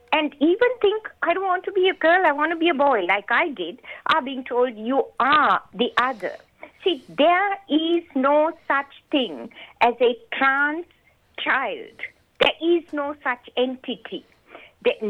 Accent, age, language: Indian, 50-69, English